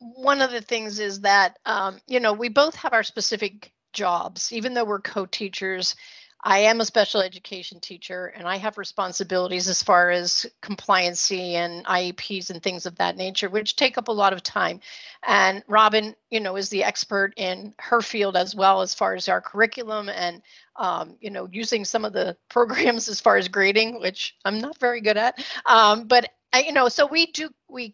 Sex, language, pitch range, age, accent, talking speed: female, English, 195-235 Hz, 40-59, American, 195 wpm